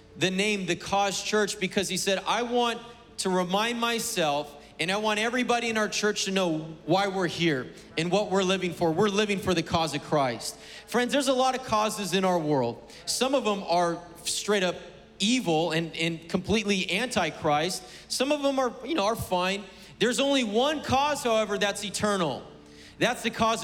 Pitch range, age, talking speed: 190-265 Hz, 30-49, 190 wpm